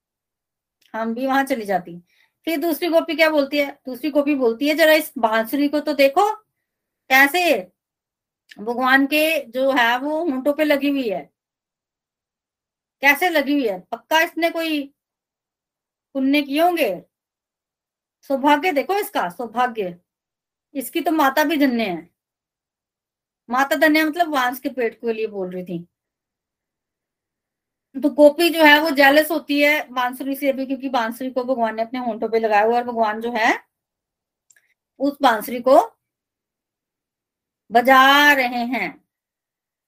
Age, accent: 30-49, native